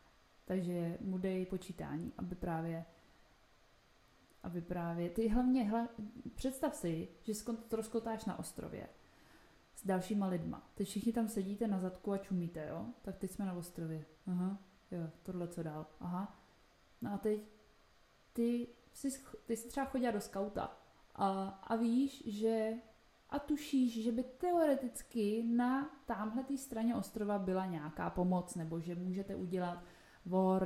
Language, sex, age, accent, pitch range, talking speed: Czech, female, 20-39, native, 175-215 Hz, 145 wpm